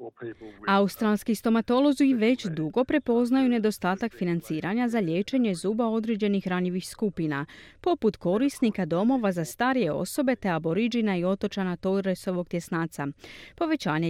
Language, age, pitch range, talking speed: Croatian, 30-49, 175-255 Hz, 120 wpm